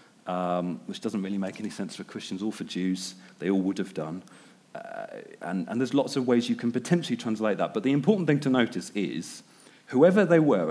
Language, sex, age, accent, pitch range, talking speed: English, male, 40-59, British, 105-155 Hz, 220 wpm